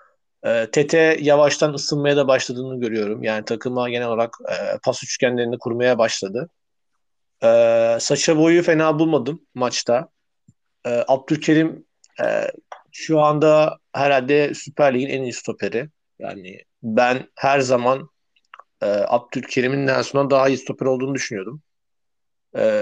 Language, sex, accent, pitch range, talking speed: Turkish, male, native, 120-145 Hz, 105 wpm